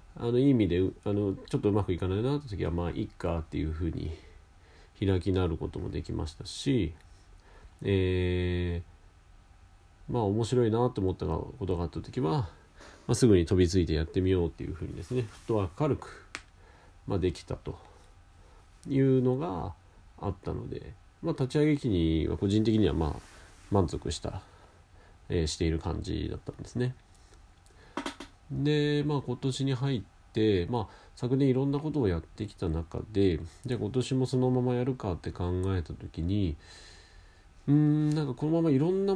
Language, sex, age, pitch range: Japanese, male, 40-59, 85-120 Hz